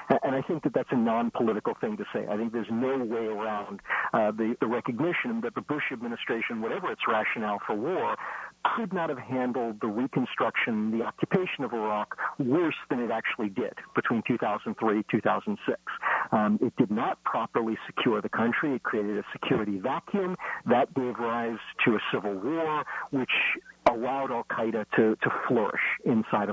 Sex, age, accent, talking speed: male, 50-69, American, 170 wpm